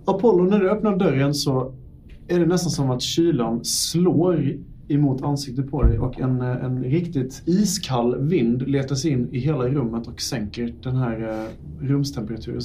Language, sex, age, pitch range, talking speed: Swedish, male, 30-49, 125-160 Hz, 155 wpm